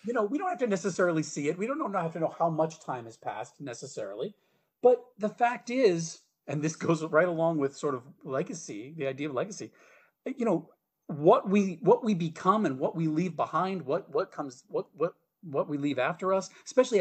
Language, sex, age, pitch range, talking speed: English, male, 40-59, 145-195 Hz, 215 wpm